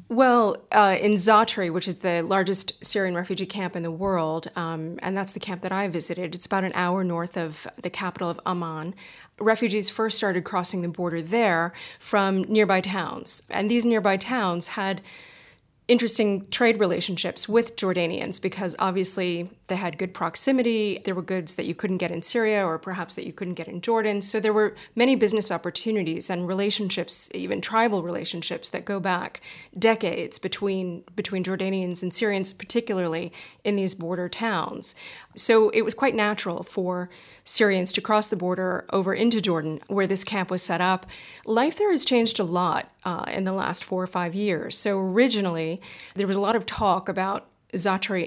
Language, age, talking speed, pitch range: English, 30-49, 180 wpm, 180-210 Hz